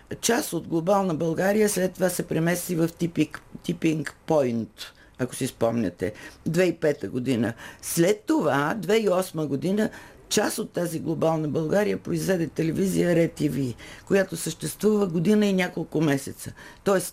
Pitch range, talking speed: 140-190 Hz, 125 wpm